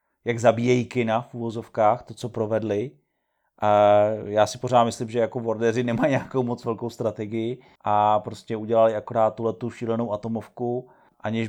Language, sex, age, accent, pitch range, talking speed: Czech, male, 30-49, native, 105-120 Hz, 145 wpm